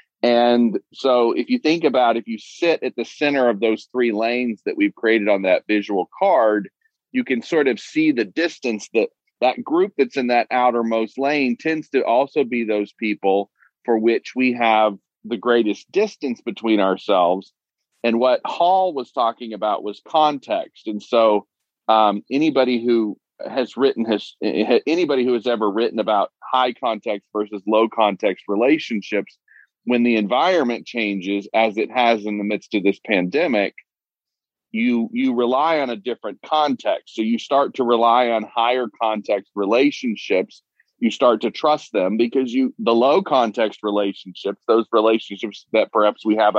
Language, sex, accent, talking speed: English, male, American, 165 wpm